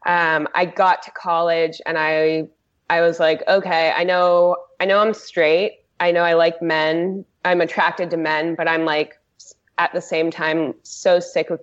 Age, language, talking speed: 20-39, English, 185 wpm